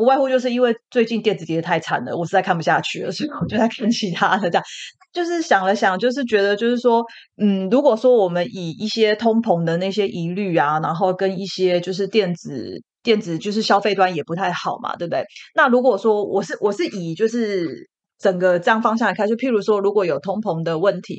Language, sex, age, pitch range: Chinese, female, 30-49, 175-225 Hz